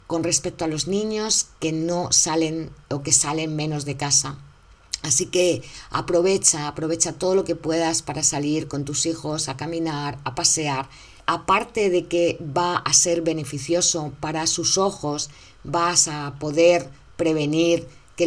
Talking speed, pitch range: 150 wpm, 145-175 Hz